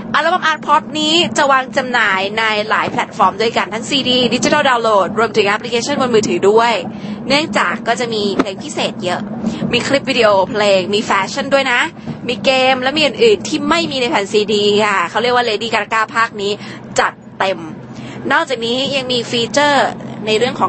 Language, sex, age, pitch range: Thai, female, 20-39, 210-255 Hz